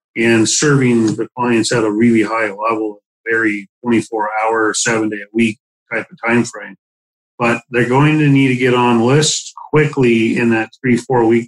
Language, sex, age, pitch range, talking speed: English, male, 40-59, 110-135 Hz, 150 wpm